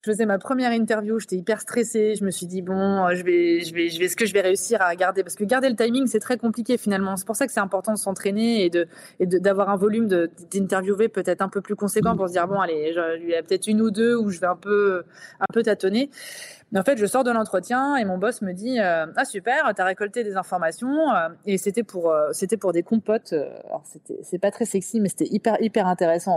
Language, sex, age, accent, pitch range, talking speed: French, female, 20-39, French, 185-230 Hz, 265 wpm